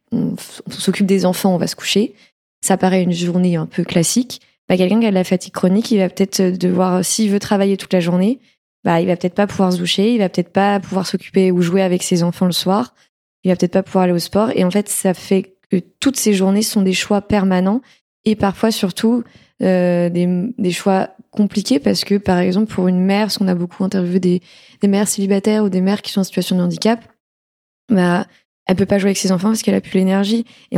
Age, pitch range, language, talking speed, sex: 20-39, 185-215 Hz, French, 240 wpm, female